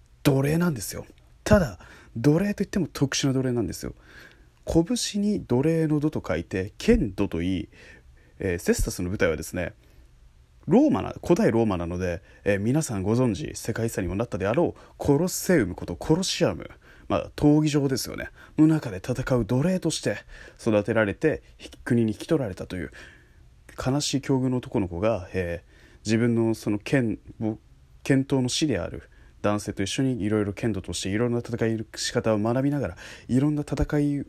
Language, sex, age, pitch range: Japanese, male, 20-39, 95-145 Hz